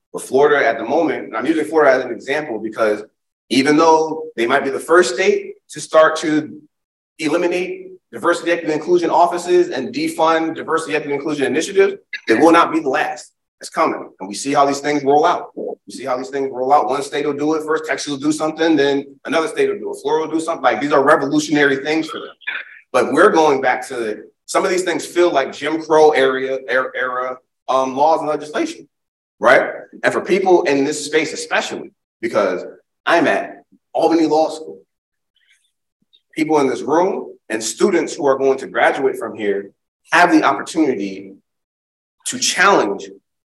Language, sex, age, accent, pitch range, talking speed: English, male, 30-49, American, 135-180 Hz, 190 wpm